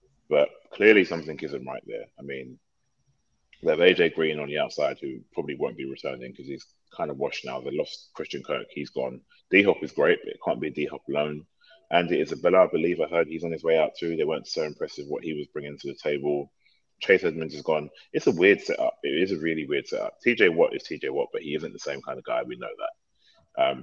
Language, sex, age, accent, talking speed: English, male, 30-49, British, 240 wpm